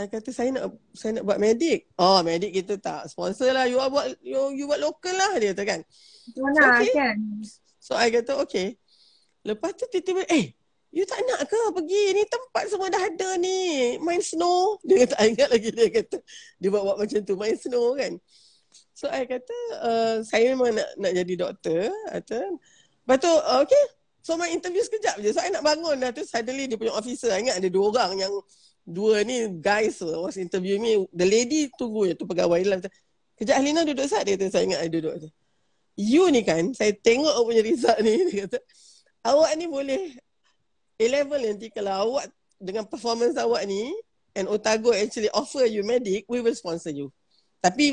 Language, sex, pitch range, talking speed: Malay, female, 205-305 Hz, 195 wpm